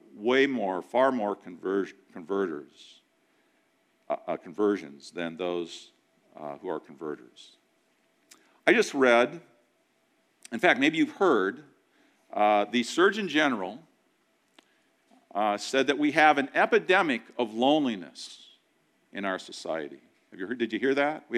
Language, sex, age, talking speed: English, male, 50-69, 130 wpm